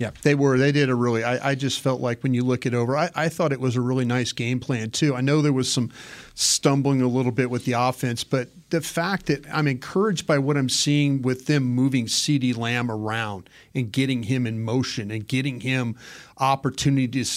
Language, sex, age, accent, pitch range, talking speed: English, male, 40-59, American, 125-145 Hz, 230 wpm